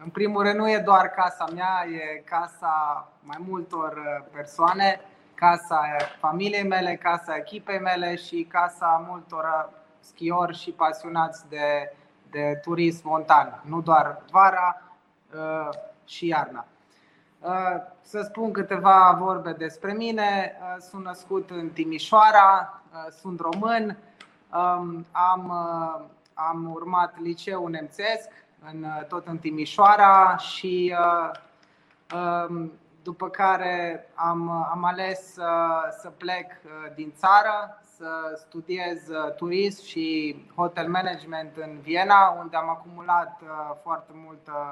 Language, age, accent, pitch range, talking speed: Romanian, 20-39, native, 160-185 Hz, 110 wpm